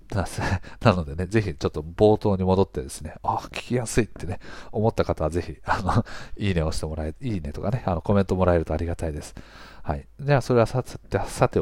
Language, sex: Japanese, male